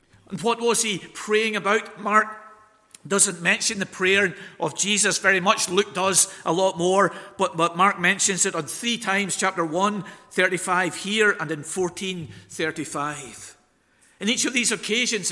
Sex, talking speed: male, 155 wpm